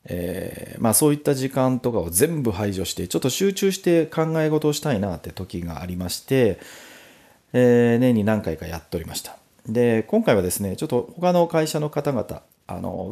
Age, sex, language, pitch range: 40-59, male, Japanese, 95-155 Hz